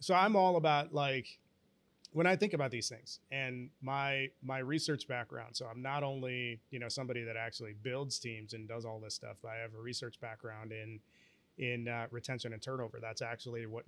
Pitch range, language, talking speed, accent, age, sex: 120-140 Hz, English, 205 wpm, American, 30-49, male